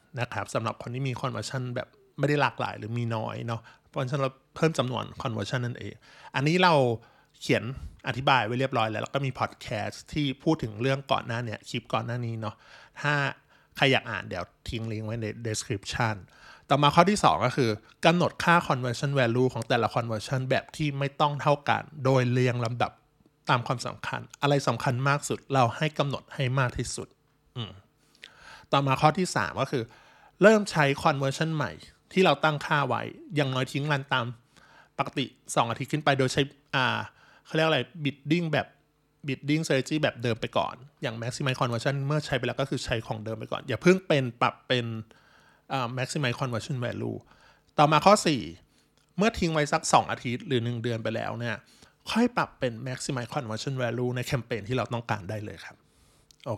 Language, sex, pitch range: Thai, male, 120-150 Hz